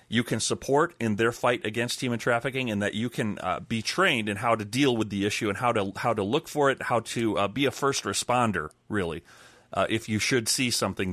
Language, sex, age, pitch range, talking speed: English, male, 30-49, 110-135 Hz, 245 wpm